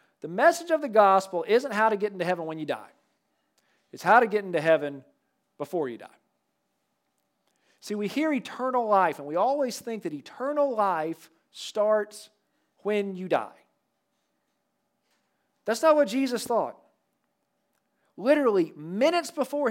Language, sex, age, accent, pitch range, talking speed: English, male, 40-59, American, 185-245 Hz, 145 wpm